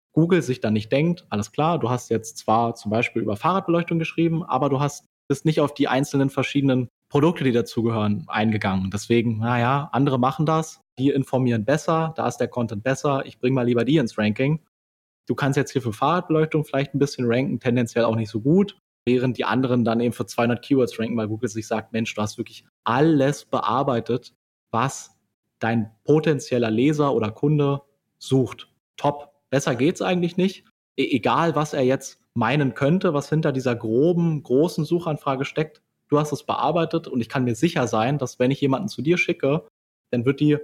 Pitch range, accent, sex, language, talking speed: 115-145 Hz, German, male, German, 190 wpm